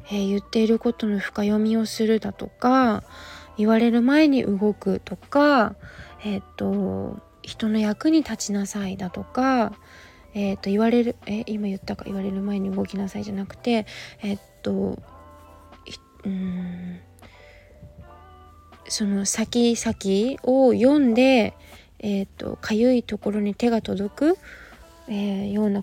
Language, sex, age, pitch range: Japanese, female, 20-39, 140-230 Hz